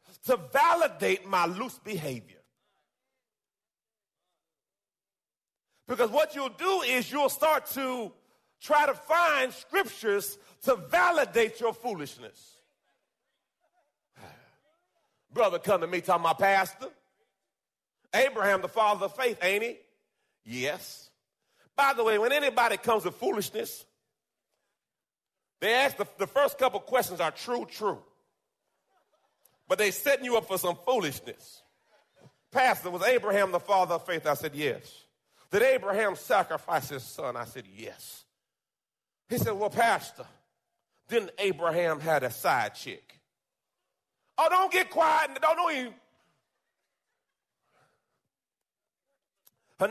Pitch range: 195-290 Hz